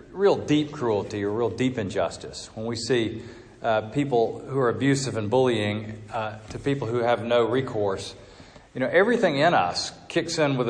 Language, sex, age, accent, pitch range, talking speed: English, male, 40-59, American, 110-140 Hz, 180 wpm